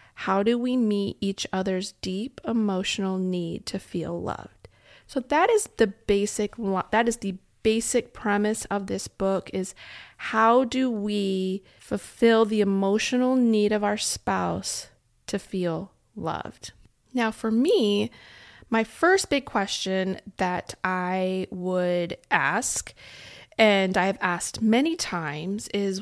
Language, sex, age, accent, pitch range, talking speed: English, female, 30-49, American, 185-220 Hz, 130 wpm